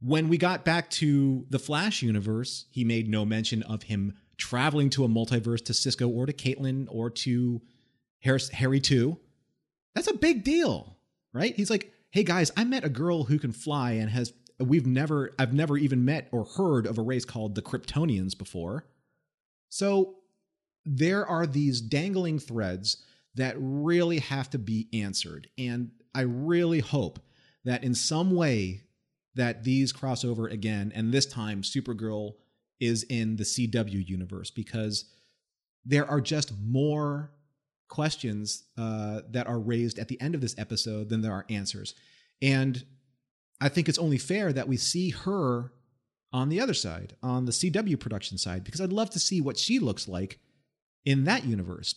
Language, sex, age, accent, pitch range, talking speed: English, male, 30-49, American, 115-150 Hz, 170 wpm